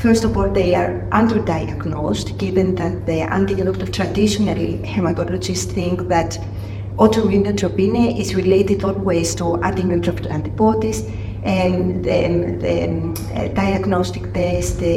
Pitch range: 95-115 Hz